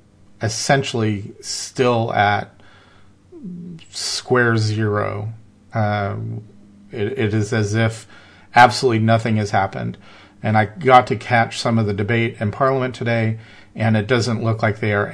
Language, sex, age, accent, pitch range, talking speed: English, male, 40-59, American, 100-115 Hz, 135 wpm